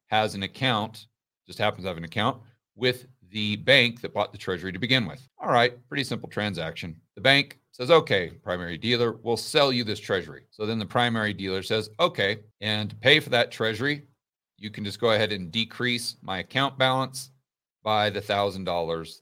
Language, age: English, 40-59